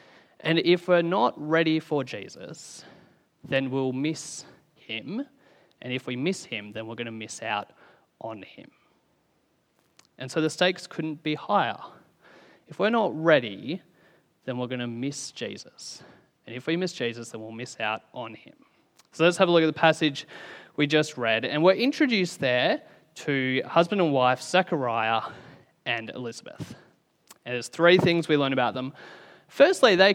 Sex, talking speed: male, 165 wpm